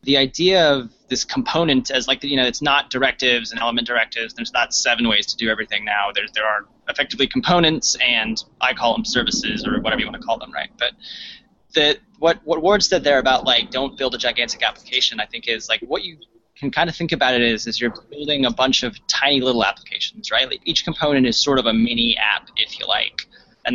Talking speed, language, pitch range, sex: 230 wpm, English, 120-170 Hz, male